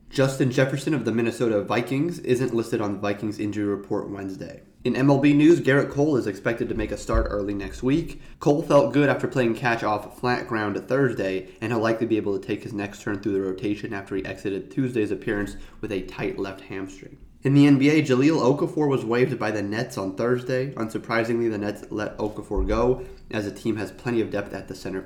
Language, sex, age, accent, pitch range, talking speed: English, male, 20-39, American, 100-130 Hz, 215 wpm